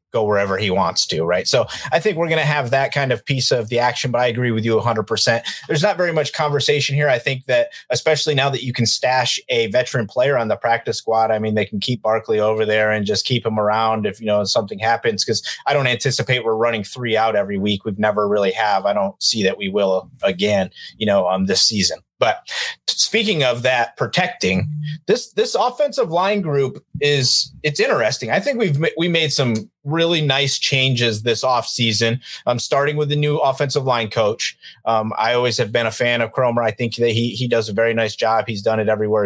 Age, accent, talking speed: 30-49, American, 230 wpm